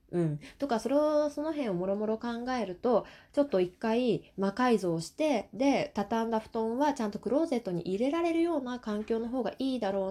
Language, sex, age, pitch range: Japanese, female, 20-39, 175-275 Hz